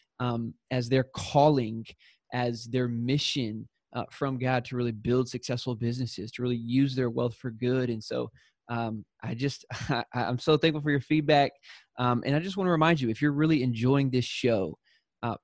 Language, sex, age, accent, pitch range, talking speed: English, male, 20-39, American, 120-140 Hz, 195 wpm